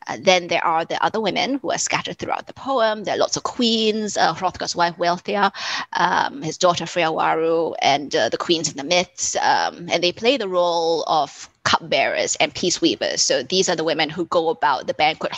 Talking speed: 205 wpm